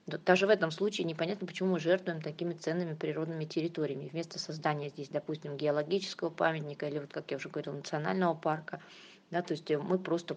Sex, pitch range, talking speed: female, 155-185 Hz, 180 wpm